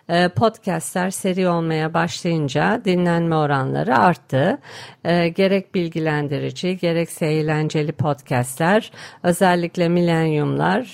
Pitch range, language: 150-185 Hz, Turkish